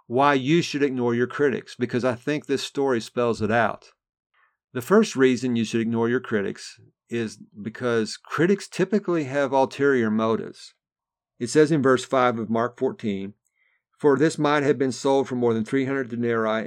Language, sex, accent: English, male, American